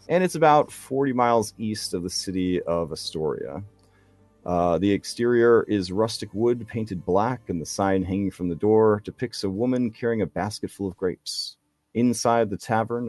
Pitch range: 85-115 Hz